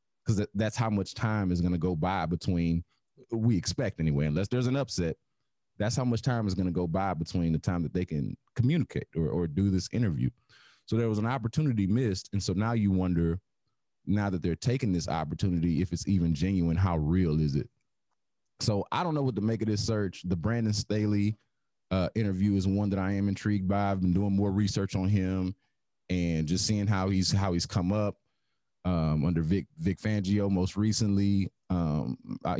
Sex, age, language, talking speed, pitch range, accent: male, 30-49, English, 205 wpm, 90-105 Hz, American